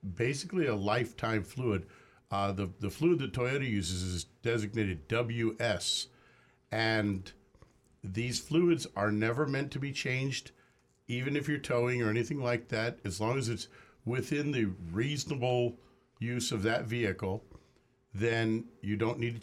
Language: English